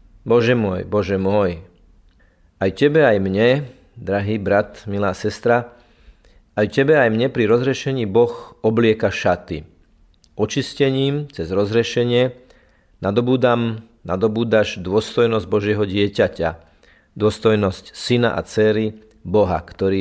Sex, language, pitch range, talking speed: male, Slovak, 95-115 Hz, 105 wpm